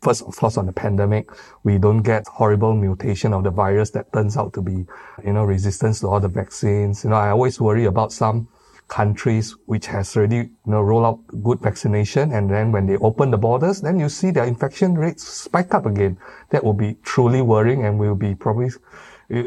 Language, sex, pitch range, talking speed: English, male, 105-120 Hz, 215 wpm